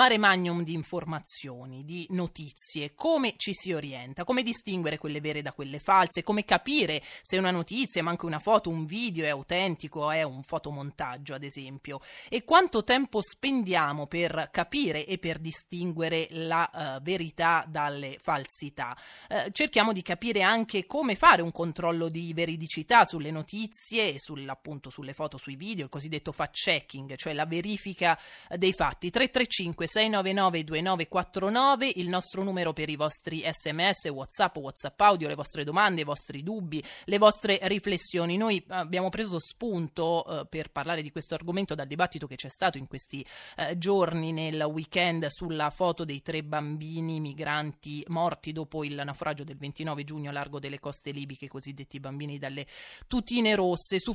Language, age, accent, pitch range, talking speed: Italian, 30-49, native, 150-190 Hz, 155 wpm